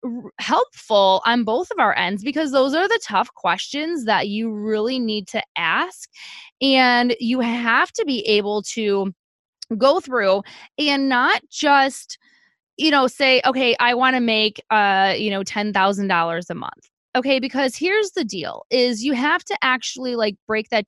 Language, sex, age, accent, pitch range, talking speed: English, female, 20-39, American, 205-275 Hz, 160 wpm